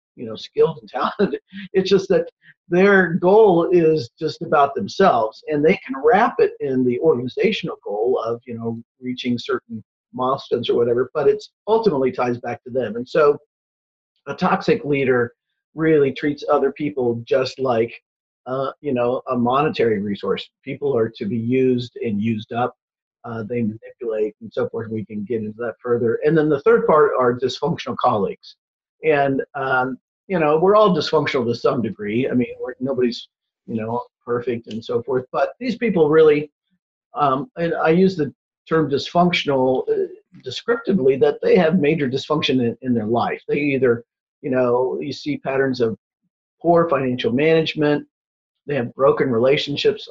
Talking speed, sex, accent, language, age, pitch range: 165 wpm, male, American, English, 50-69, 125-180 Hz